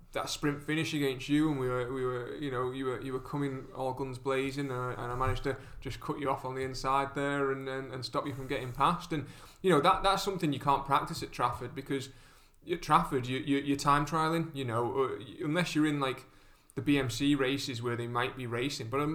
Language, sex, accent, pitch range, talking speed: English, male, British, 125-145 Hz, 240 wpm